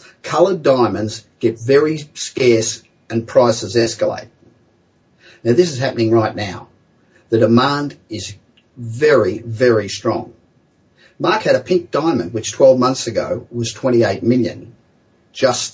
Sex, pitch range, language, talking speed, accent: male, 115-155 Hz, English, 125 wpm, Australian